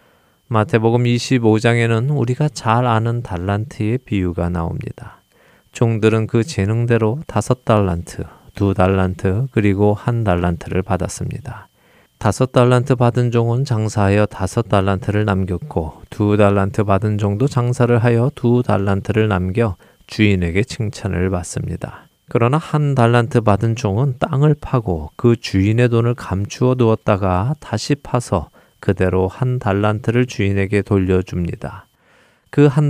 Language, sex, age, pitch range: Korean, male, 20-39, 95-120 Hz